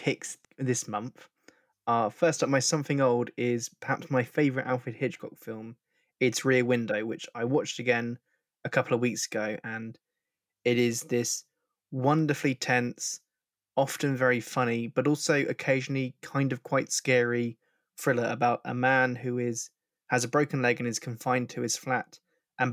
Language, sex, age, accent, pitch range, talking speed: English, male, 20-39, British, 120-135 Hz, 160 wpm